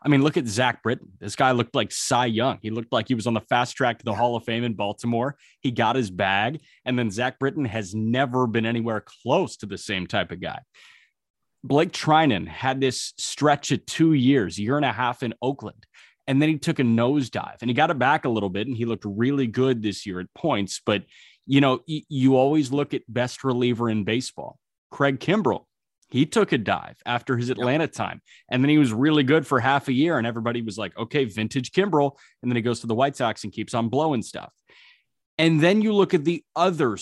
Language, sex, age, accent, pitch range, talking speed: English, male, 30-49, American, 115-145 Hz, 235 wpm